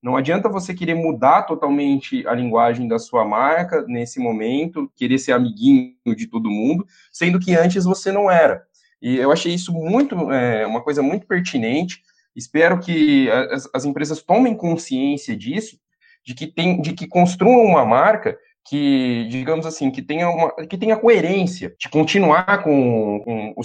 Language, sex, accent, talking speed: Portuguese, male, Brazilian, 160 wpm